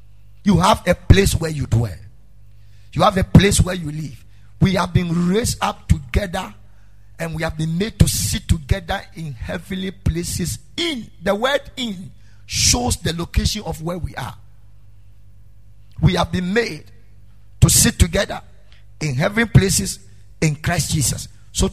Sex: male